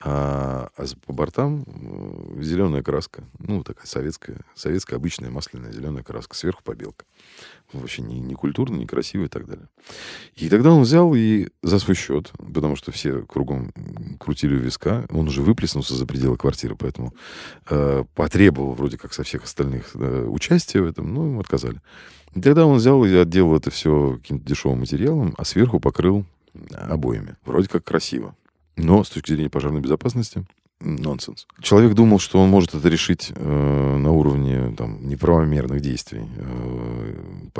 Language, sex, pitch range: Russian, male, 70-95 Hz